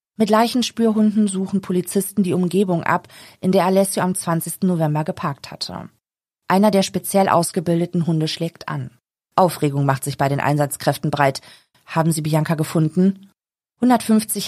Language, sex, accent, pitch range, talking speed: German, female, German, 165-195 Hz, 140 wpm